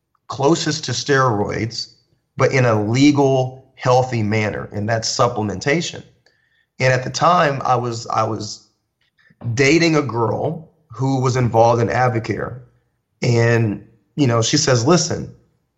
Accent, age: American, 30-49